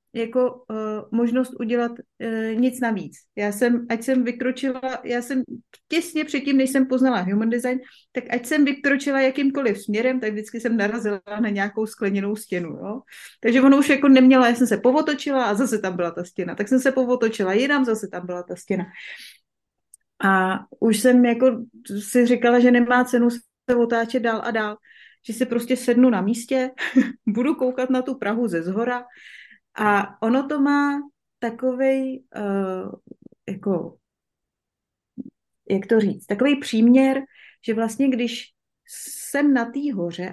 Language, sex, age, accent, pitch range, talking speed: Czech, female, 30-49, native, 210-255 Hz, 160 wpm